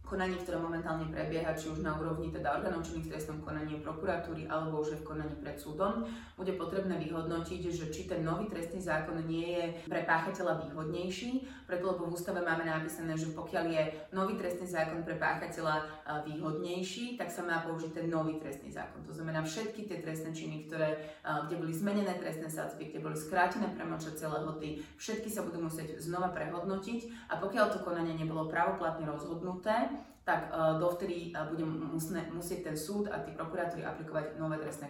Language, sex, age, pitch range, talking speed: Slovak, female, 30-49, 155-175 Hz, 170 wpm